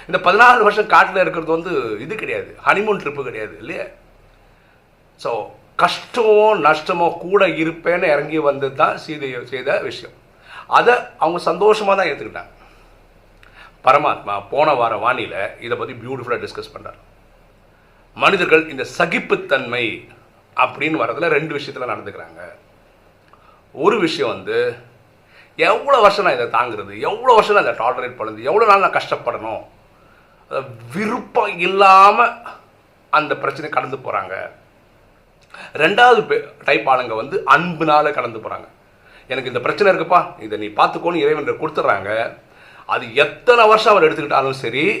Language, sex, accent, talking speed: Tamil, male, native, 105 wpm